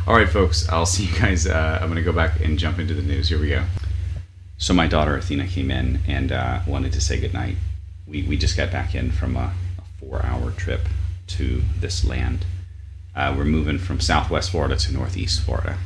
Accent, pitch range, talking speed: American, 85-90 Hz, 205 wpm